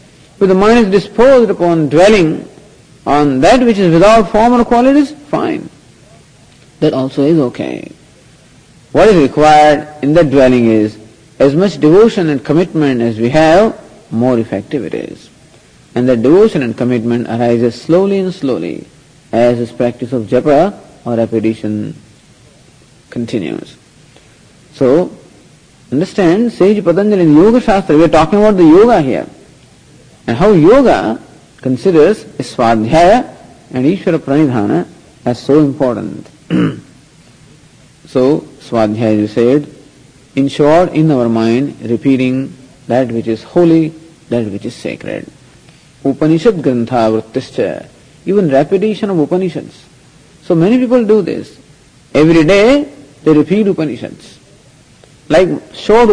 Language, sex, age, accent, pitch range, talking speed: English, male, 50-69, Indian, 125-175 Hz, 125 wpm